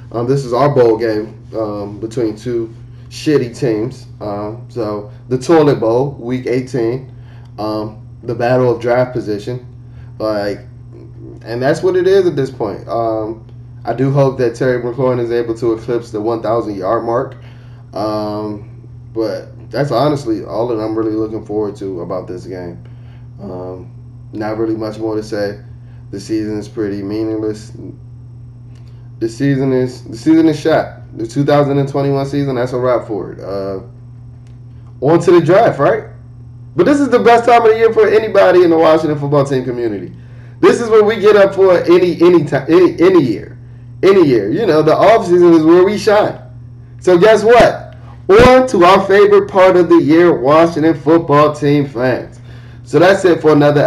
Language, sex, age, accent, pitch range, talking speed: English, male, 10-29, American, 115-150 Hz, 170 wpm